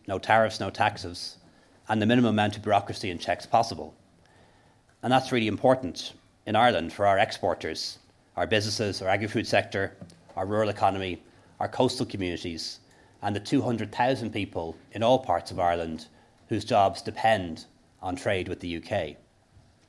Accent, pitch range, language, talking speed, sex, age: Irish, 95-115 Hz, English, 150 wpm, male, 40-59